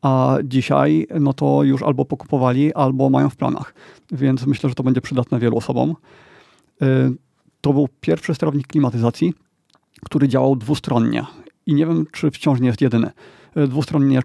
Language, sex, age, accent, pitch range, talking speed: Polish, male, 40-59, native, 130-150 Hz, 150 wpm